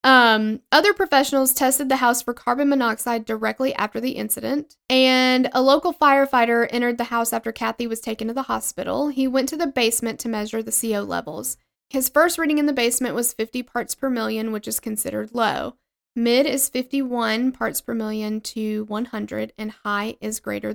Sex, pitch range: female, 220-270 Hz